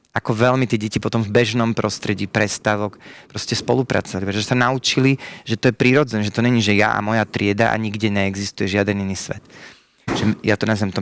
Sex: male